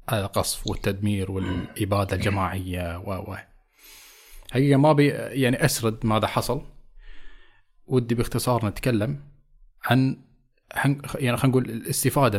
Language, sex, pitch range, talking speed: Arabic, male, 95-125 Hz, 105 wpm